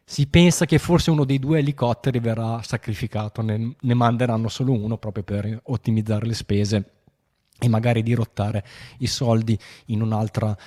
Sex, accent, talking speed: male, native, 150 wpm